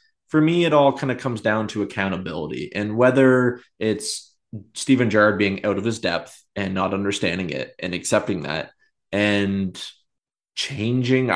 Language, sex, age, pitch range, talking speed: English, male, 20-39, 95-115 Hz, 155 wpm